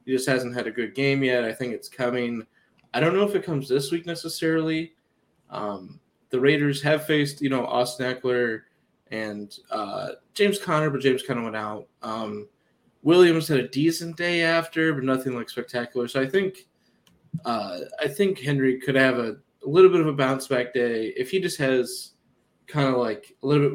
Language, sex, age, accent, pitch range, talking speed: English, male, 20-39, American, 115-140 Hz, 195 wpm